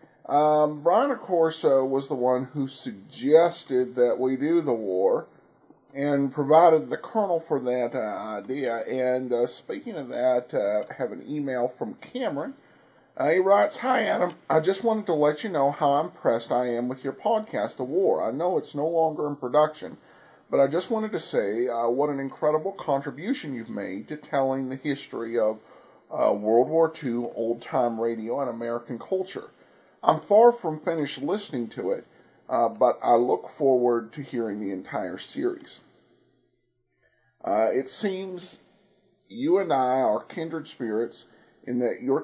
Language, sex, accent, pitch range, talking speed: English, male, American, 125-170 Hz, 170 wpm